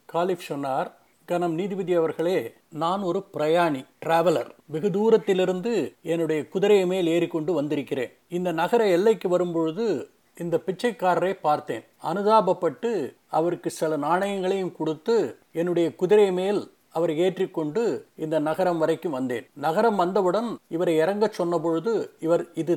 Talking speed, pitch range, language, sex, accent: 120 wpm, 160-190 Hz, Tamil, male, native